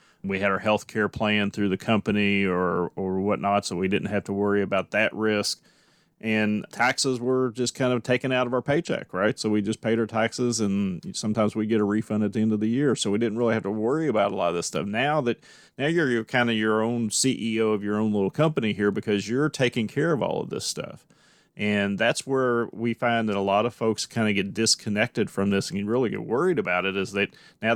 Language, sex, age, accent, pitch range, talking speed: English, male, 30-49, American, 100-115 Hz, 250 wpm